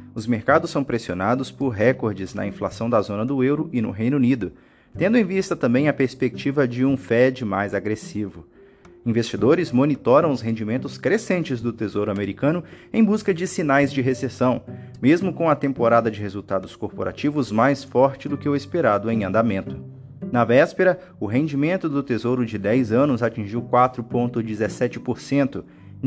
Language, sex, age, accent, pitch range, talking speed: Portuguese, male, 30-49, Brazilian, 115-150 Hz, 155 wpm